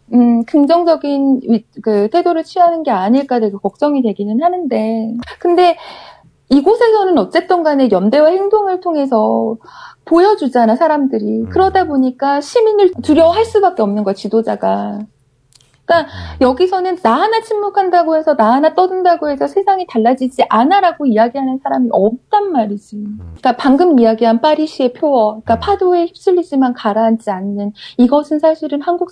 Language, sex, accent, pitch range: Korean, female, native, 220-325 Hz